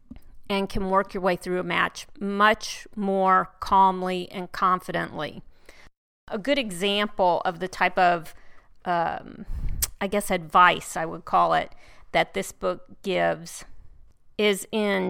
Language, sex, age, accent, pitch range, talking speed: English, female, 40-59, American, 185-215 Hz, 135 wpm